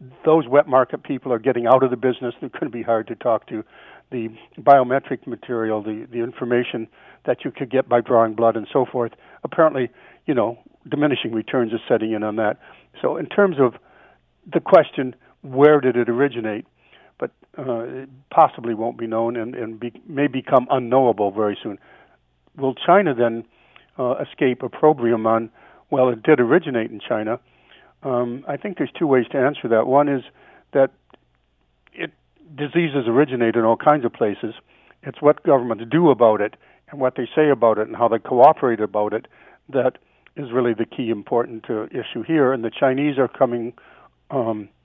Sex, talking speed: male, 180 wpm